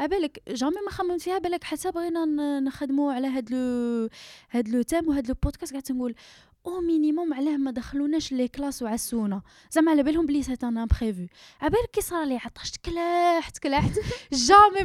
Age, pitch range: 10-29, 230-310 Hz